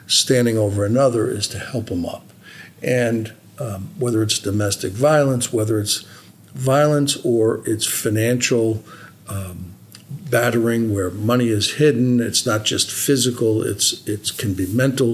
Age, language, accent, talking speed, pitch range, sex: 50-69, English, American, 140 wpm, 110-130 Hz, male